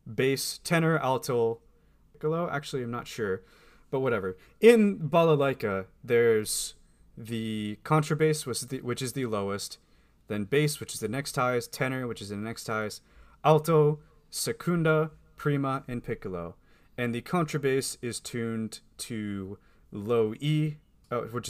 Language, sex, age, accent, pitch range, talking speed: English, male, 20-39, American, 110-140 Hz, 130 wpm